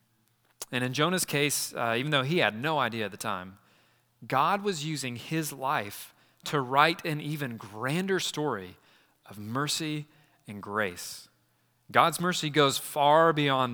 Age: 30-49